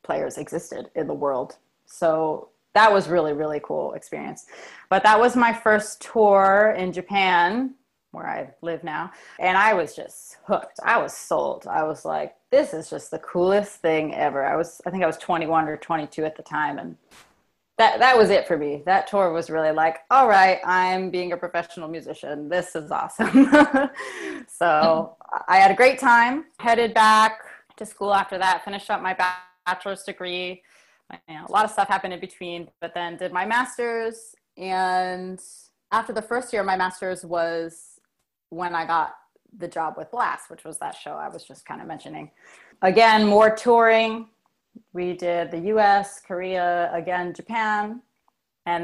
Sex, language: female, English